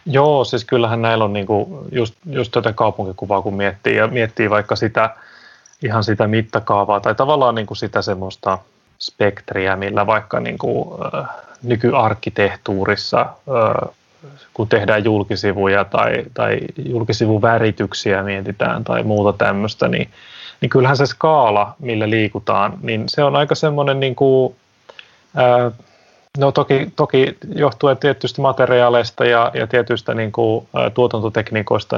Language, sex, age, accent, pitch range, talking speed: Finnish, male, 30-49, native, 110-135 Hz, 120 wpm